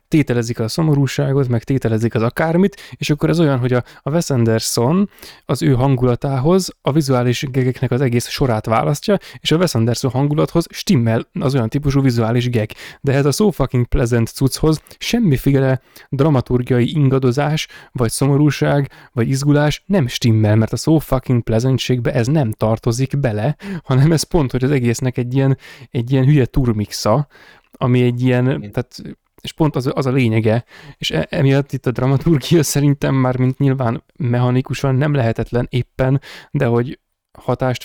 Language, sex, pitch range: Hungarian, male, 120-145 Hz